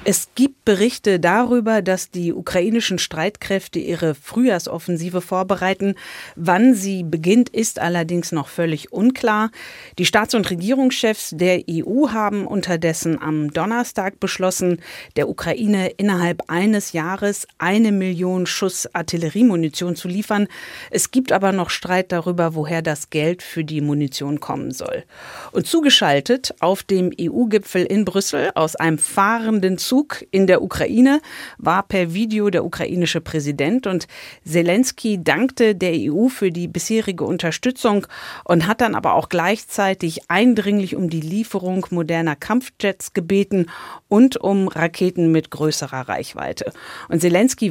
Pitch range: 165-215 Hz